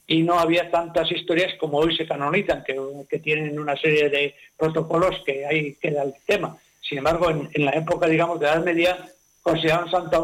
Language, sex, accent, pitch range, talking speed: Spanish, male, Spanish, 155-180 Hz, 200 wpm